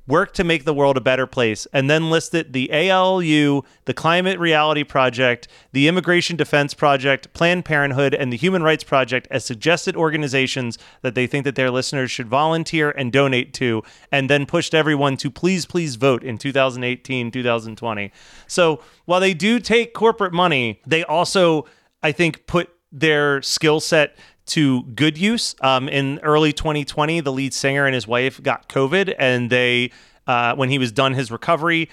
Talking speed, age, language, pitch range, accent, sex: 175 wpm, 30-49, English, 135-165 Hz, American, male